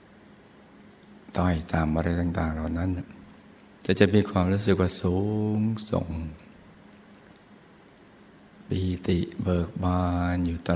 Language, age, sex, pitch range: Thai, 60-79, male, 85-95 Hz